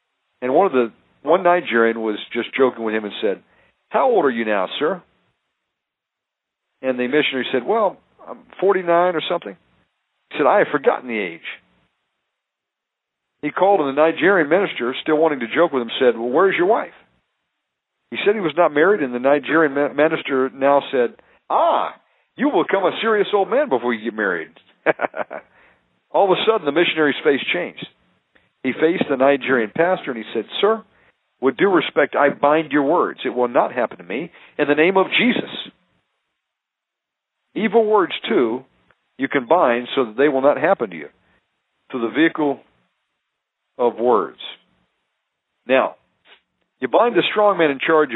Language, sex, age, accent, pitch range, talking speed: English, male, 50-69, American, 120-170 Hz, 170 wpm